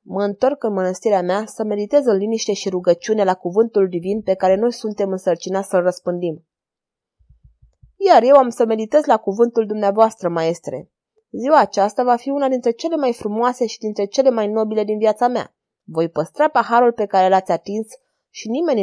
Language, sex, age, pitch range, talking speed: Romanian, female, 20-39, 190-240 Hz, 180 wpm